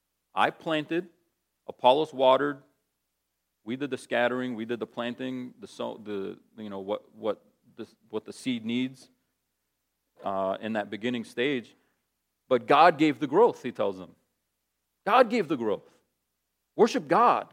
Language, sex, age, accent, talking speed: English, male, 40-59, American, 145 wpm